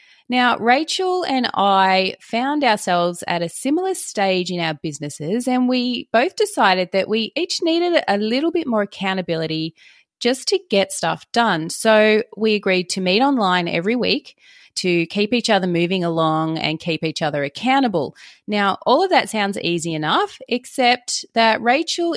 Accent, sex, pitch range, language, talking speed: Australian, female, 175-260 Hz, English, 160 wpm